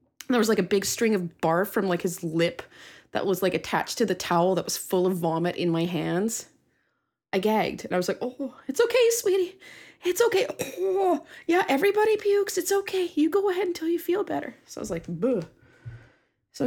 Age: 20-39